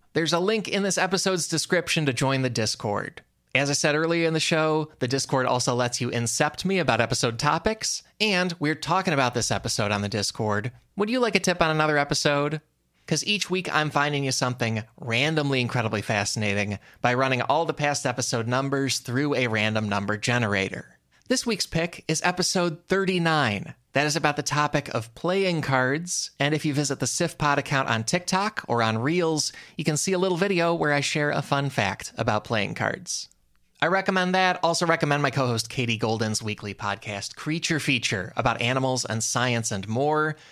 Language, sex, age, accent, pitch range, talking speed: English, male, 20-39, American, 120-165 Hz, 190 wpm